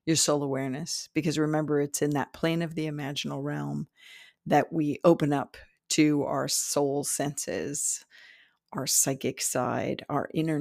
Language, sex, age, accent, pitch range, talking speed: English, female, 50-69, American, 145-165 Hz, 145 wpm